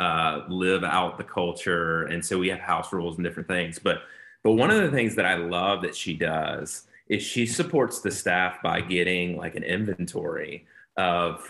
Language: English